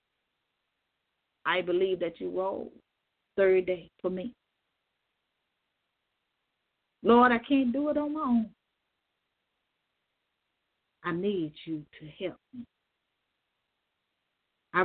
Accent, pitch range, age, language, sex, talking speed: American, 190-235 Hz, 40-59, English, female, 95 wpm